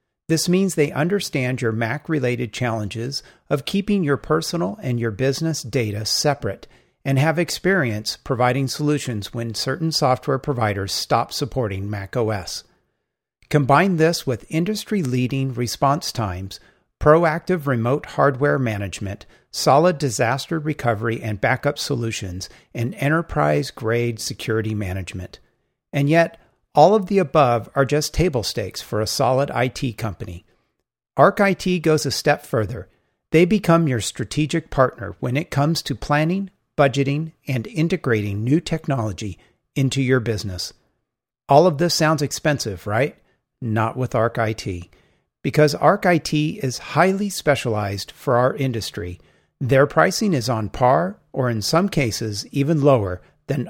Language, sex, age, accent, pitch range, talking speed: English, male, 50-69, American, 115-155 Hz, 130 wpm